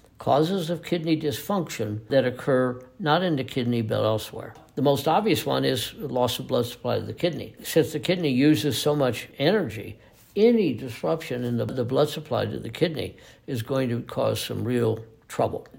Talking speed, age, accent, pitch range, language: 185 wpm, 60-79, American, 115-150 Hz, English